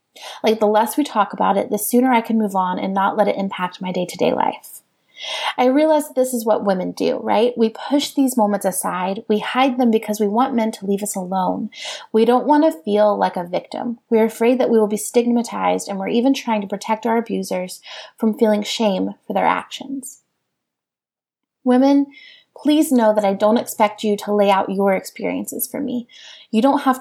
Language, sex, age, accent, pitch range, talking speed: English, female, 30-49, American, 205-250 Hz, 205 wpm